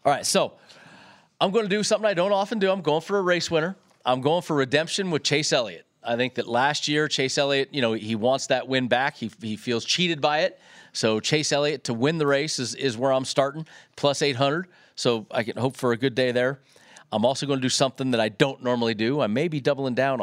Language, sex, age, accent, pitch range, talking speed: English, male, 40-59, American, 125-170 Hz, 250 wpm